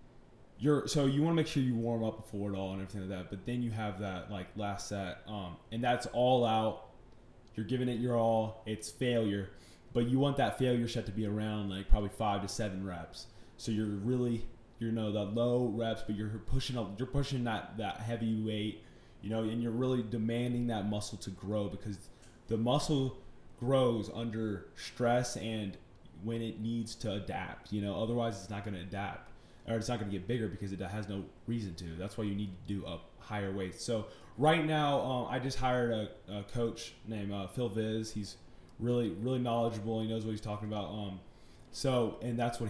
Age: 20-39